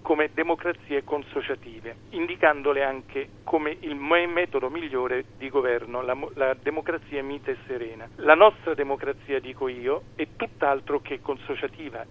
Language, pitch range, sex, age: Italian, 125-150 Hz, male, 40-59